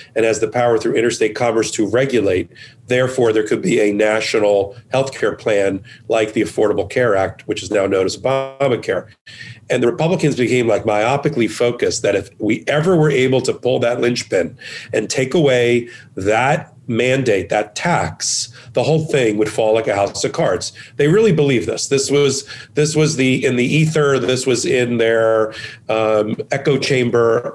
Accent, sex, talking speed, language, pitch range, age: American, male, 175 wpm, English, 115-135 Hz, 40-59